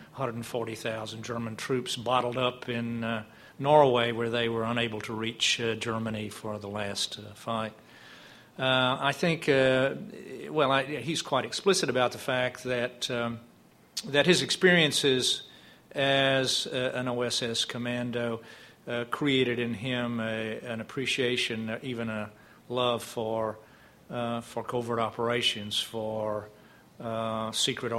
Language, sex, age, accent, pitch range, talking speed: English, male, 50-69, American, 110-130 Hz, 130 wpm